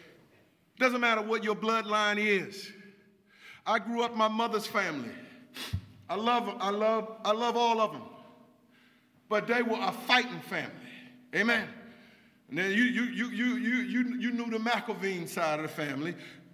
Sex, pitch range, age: male, 225-270 Hz, 50-69